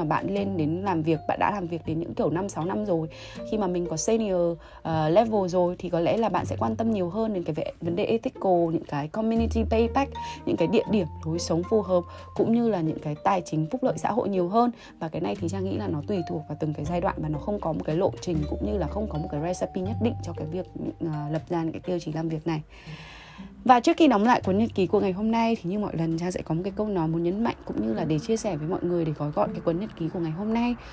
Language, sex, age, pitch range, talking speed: Vietnamese, female, 20-39, 155-205 Hz, 300 wpm